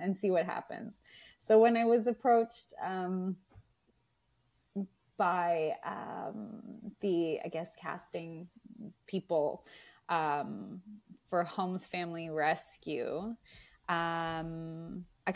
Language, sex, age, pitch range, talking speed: English, female, 20-39, 160-190 Hz, 95 wpm